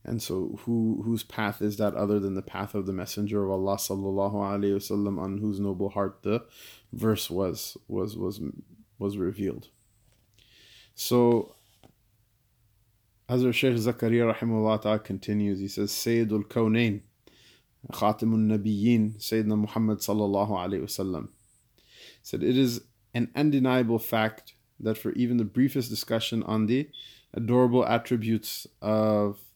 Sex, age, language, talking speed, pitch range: male, 20-39, English, 130 wpm, 105-115 Hz